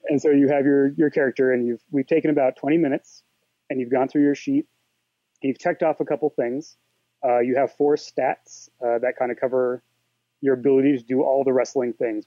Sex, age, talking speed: male, 30-49, 215 wpm